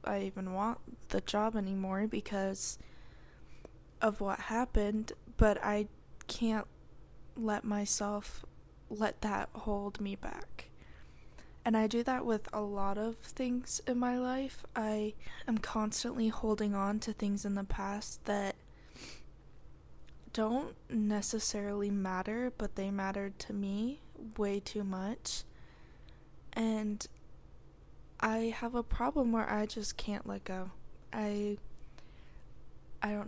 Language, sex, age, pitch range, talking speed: English, female, 10-29, 200-220 Hz, 125 wpm